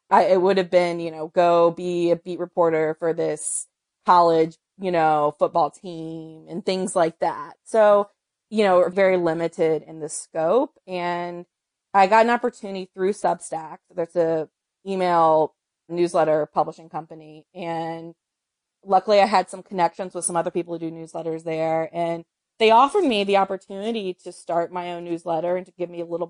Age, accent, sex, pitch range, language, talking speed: 20-39, American, female, 170-195 Hz, English, 170 wpm